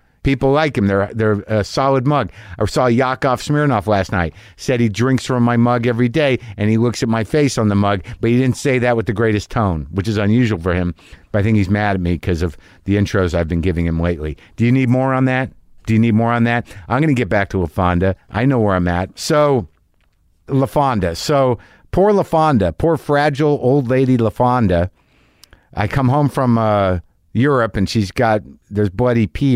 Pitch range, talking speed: 95-130 Hz, 215 wpm